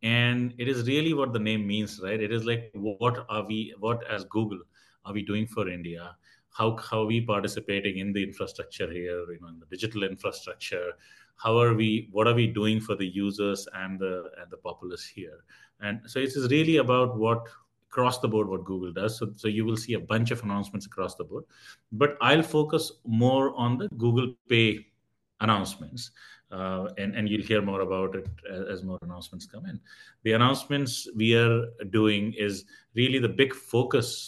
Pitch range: 100-120 Hz